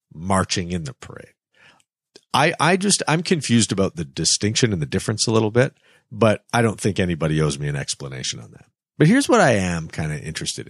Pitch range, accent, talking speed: 85-125 Hz, American, 210 wpm